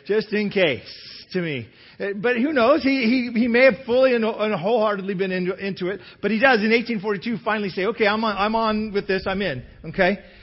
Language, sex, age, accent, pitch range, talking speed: English, male, 40-59, American, 155-225 Hz, 215 wpm